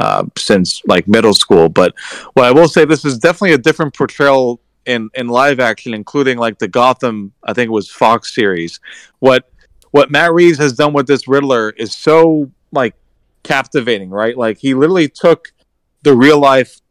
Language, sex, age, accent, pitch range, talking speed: English, male, 30-49, American, 110-135 Hz, 180 wpm